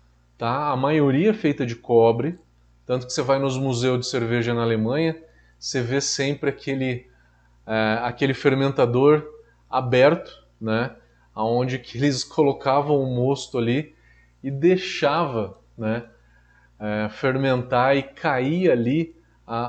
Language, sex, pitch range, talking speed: Portuguese, male, 115-160 Hz, 125 wpm